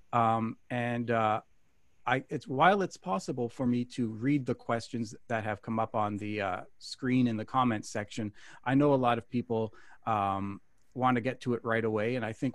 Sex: male